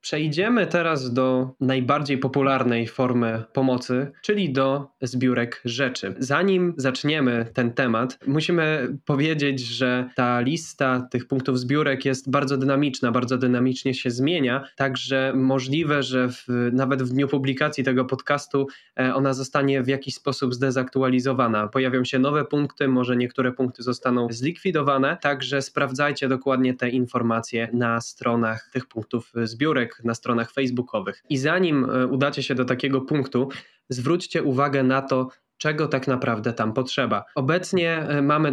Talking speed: 130 wpm